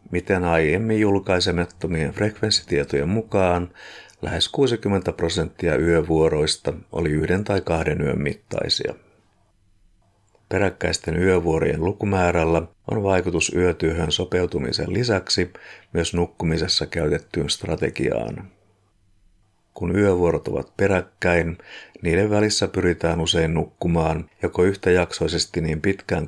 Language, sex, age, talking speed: Finnish, male, 50-69, 90 wpm